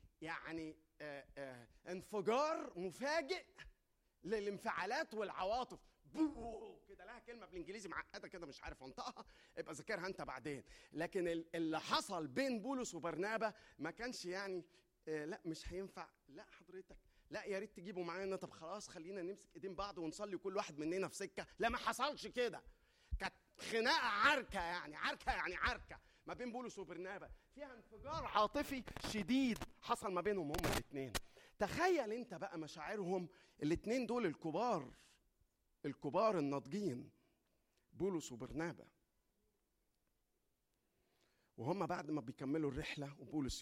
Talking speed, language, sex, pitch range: 125 wpm, Arabic, male, 140-210 Hz